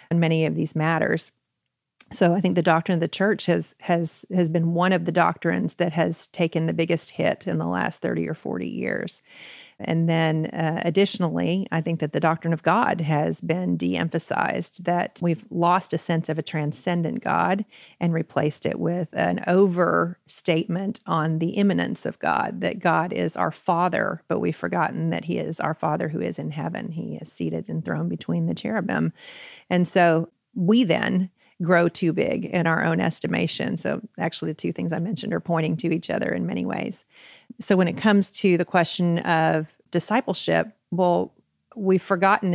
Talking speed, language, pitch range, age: 185 wpm, English, 160-180 Hz, 40-59